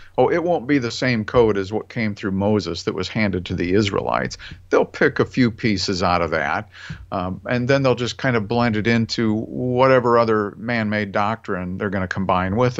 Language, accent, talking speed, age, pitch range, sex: English, American, 210 wpm, 50-69, 105-145 Hz, male